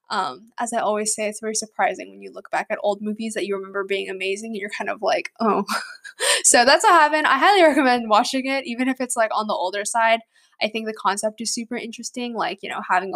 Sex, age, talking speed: female, 10-29, 245 wpm